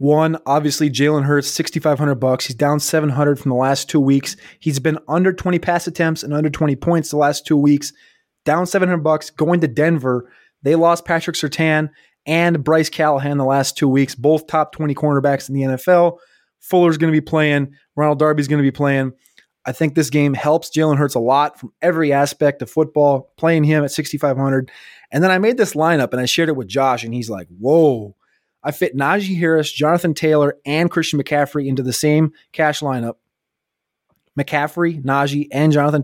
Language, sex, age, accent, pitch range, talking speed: English, male, 20-39, American, 135-155 Hz, 190 wpm